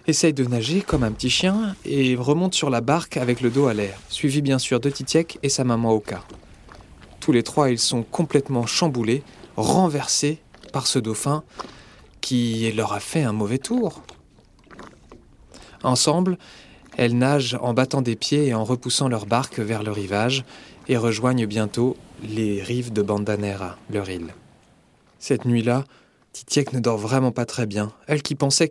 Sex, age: male, 20-39